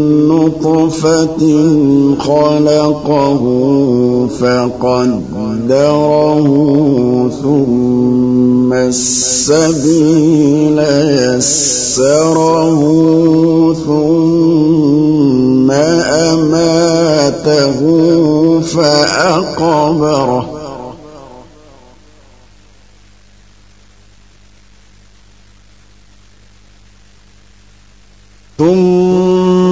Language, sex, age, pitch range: Arabic, male, 50-69, 125-160 Hz